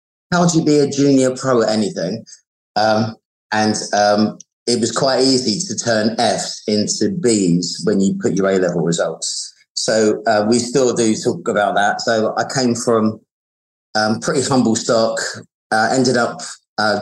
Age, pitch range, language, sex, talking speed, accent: 30-49, 105-120 Hz, English, male, 170 wpm, British